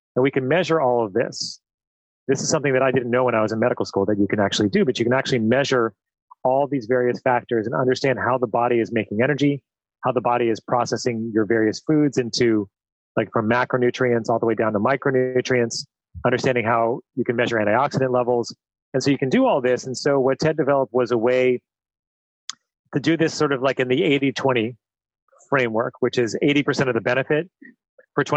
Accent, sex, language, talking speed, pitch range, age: American, male, English, 210 wpm, 115-140 Hz, 30-49